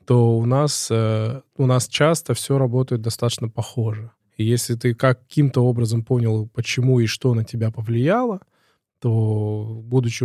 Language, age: Russian, 20-39